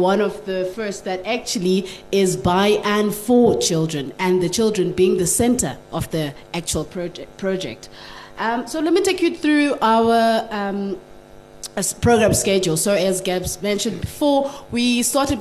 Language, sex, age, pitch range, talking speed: English, female, 20-39, 185-235 Hz, 150 wpm